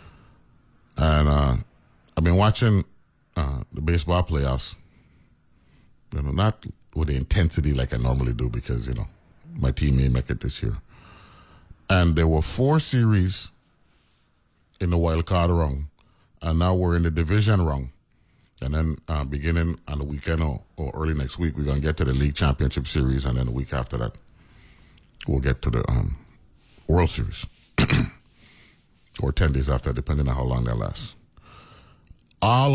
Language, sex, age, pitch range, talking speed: English, male, 40-59, 75-100 Hz, 165 wpm